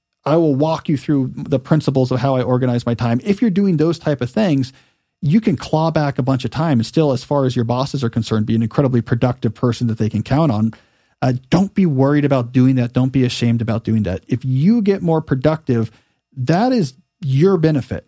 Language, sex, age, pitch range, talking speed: English, male, 40-59, 120-160 Hz, 230 wpm